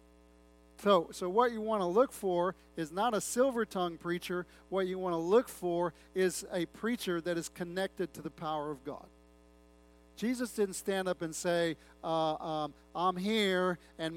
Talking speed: 180 wpm